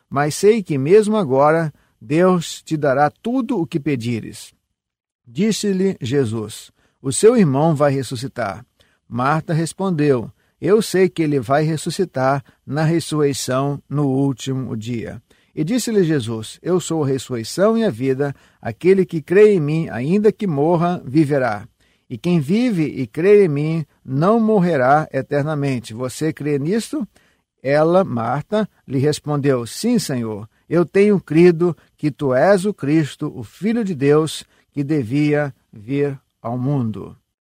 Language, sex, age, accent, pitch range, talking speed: Portuguese, male, 50-69, Brazilian, 130-185 Hz, 140 wpm